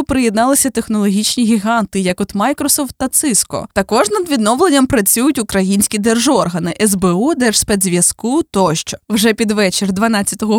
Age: 20-39